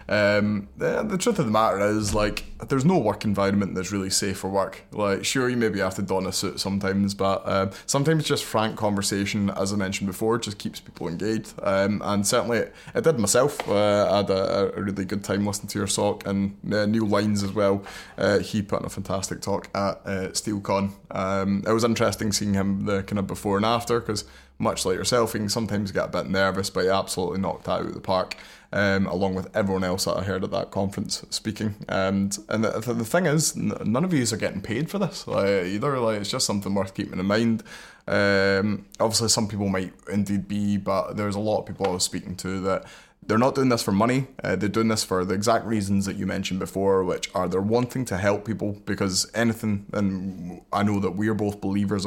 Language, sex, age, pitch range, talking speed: English, male, 20-39, 95-110 Hz, 230 wpm